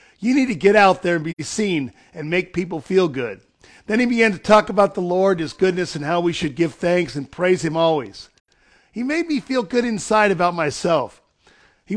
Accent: American